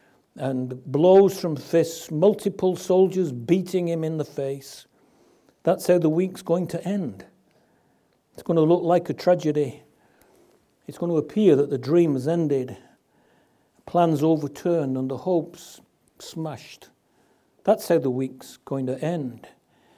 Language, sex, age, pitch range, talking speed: English, male, 60-79, 145-180 Hz, 140 wpm